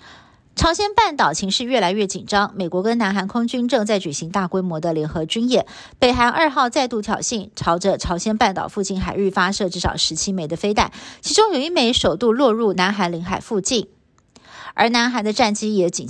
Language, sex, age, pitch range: Chinese, female, 50-69, 180-235 Hz